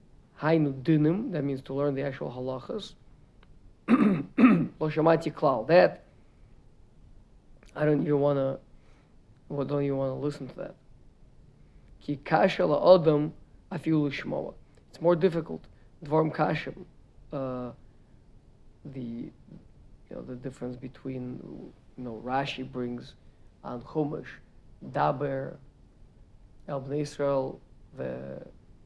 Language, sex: English, male